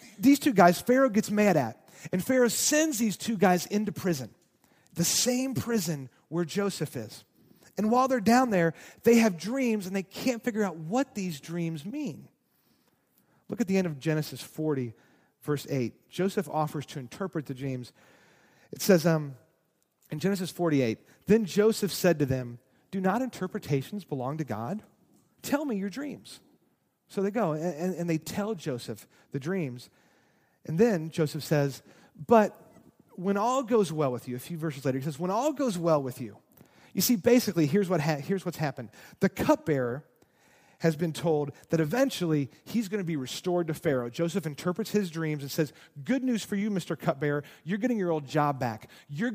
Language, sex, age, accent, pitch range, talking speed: English, male, 40-59, American, 150-215 Hz, 180 wpm